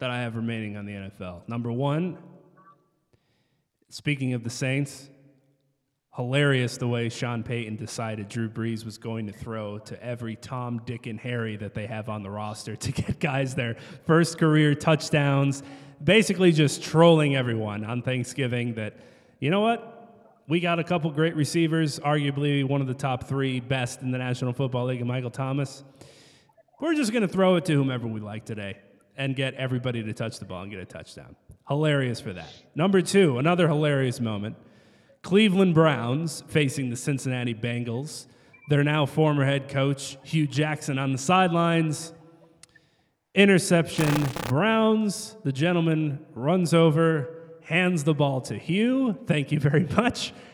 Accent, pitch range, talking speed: American, 125-170 Hz, 160 wpm